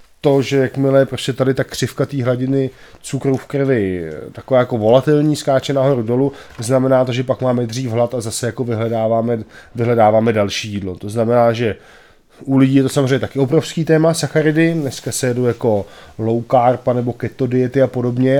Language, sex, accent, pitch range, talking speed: Czech, male, native, 120-135 Hz, 185 wpm